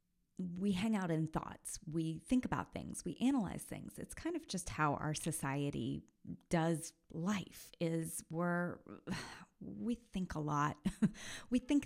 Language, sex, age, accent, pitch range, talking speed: English, female, 30-49, American, 145-180 Hz, 145 wpm